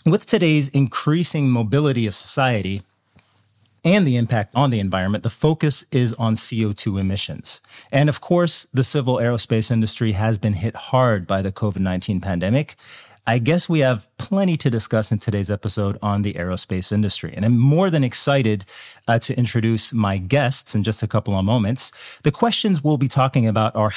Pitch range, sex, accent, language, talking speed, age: 110-140 Hz, male, American, English, 175 wpm, 30-49